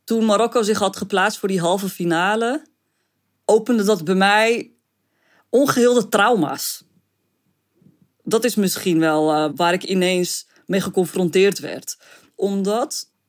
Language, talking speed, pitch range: Dutch, 120 wpm, 180-225 Hz